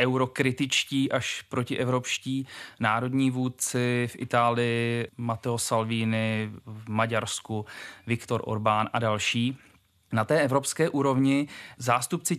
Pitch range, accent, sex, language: 120-150 Hz, native, male, Czech